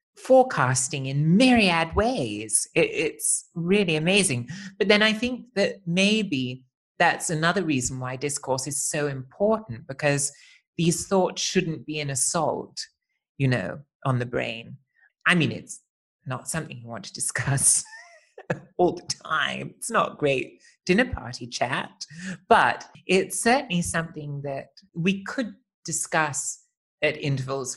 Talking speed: 130 wpm